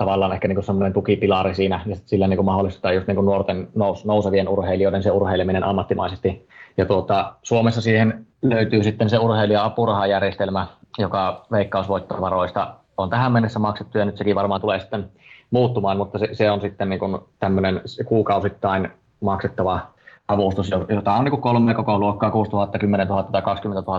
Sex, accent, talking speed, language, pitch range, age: male, native, 155 wpm, Finnish, 95-110 Hz, 20-39